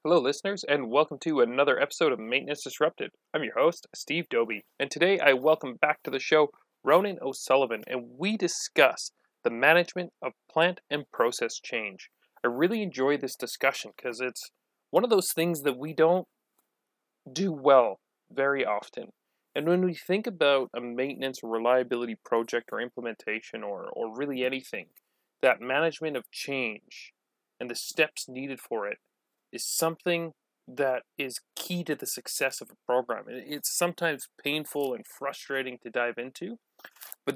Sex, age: male, 30-49